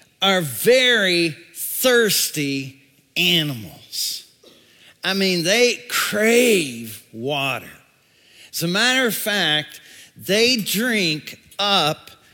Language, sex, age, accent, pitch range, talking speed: English, male, 50-69, American, 150-195 Hz, 85 wpm